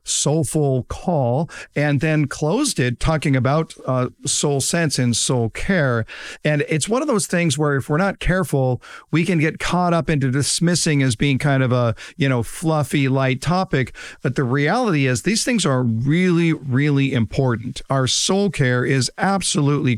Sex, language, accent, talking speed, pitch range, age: male, English, American, 170 wpm, 135-180 Hz, 50-69